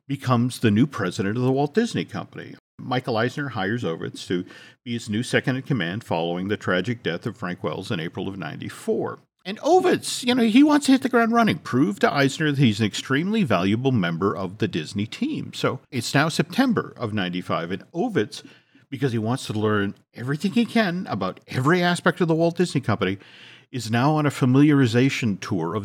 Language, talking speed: English, 200 wpm